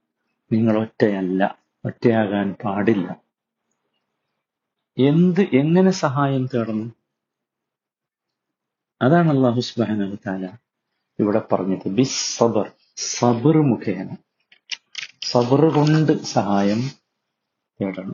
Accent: native